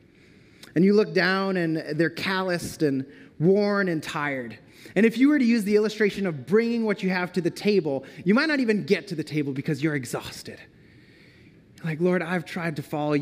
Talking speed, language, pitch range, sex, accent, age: 200 wpm, English, 135-180 Hz, male, American, 30-49